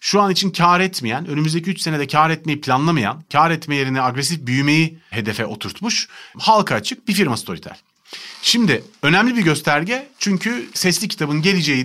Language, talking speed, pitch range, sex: Turkish, 155 wpm, 140-195 Hz, male